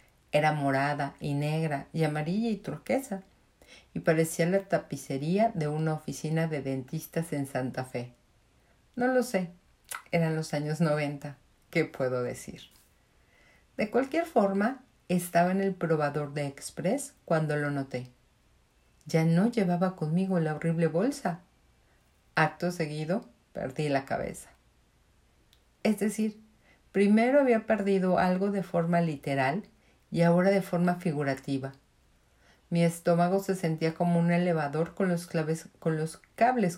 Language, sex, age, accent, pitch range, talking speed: Spanish, female, 50-69, Mexican, 145-195 Hz, 130 wpm